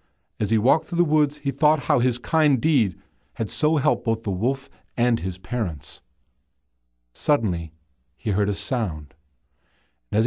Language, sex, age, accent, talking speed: English, male, 50-69, American, 160 wpm